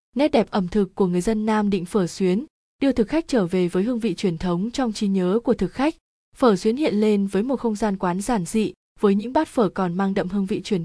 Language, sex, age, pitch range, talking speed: Vietnamese, female, 20-39, 185-230 Hz, 265 wpm